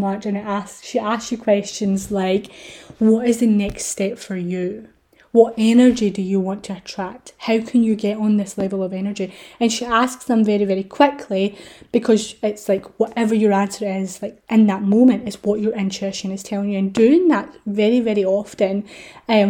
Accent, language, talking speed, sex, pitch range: British, English, 195 wpm, female, 200-245 Hz